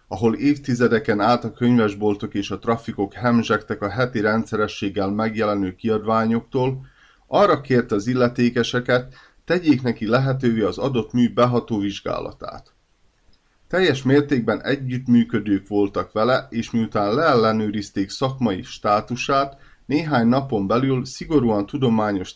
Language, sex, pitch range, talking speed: Hungarian, male, 105-130 Hz, 110 wpm